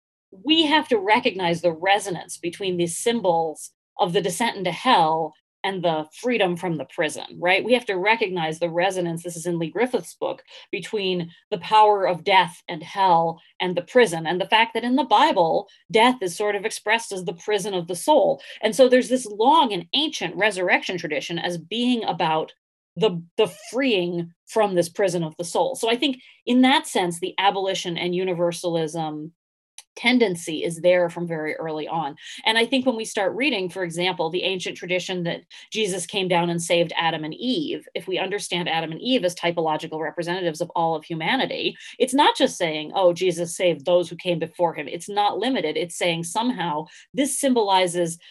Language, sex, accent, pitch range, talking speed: English, female, American, 170-225 Hz, 190 wpm